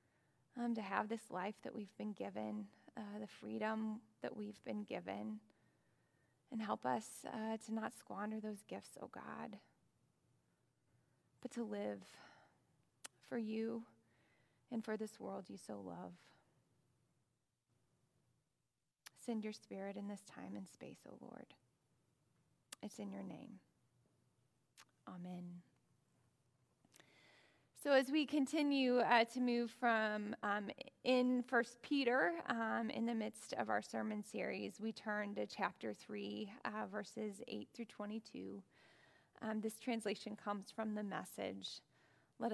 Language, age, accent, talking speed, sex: English, 20-39, American, 130 wpm, female